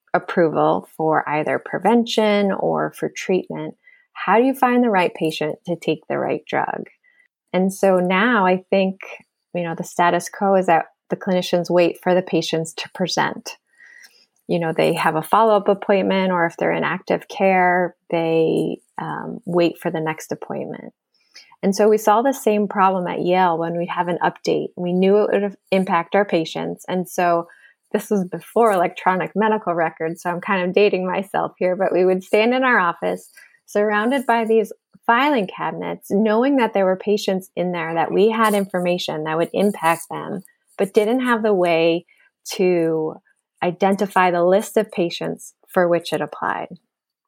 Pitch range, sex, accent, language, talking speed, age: 170-210 Hz, female, American, English, 175 wpm, 20-39